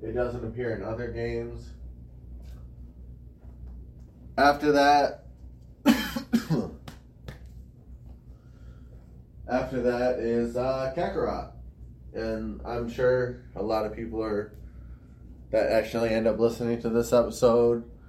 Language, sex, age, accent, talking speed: English, male, 20-39, American, 95 wpm